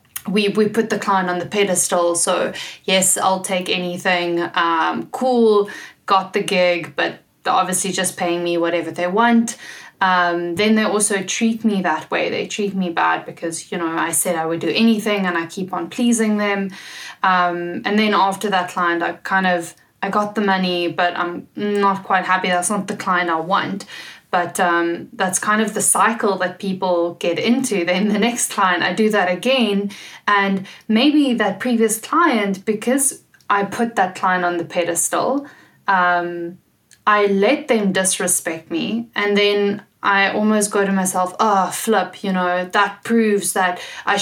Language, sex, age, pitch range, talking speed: English, female, 10-29, 180-210 Hz, 180 wpm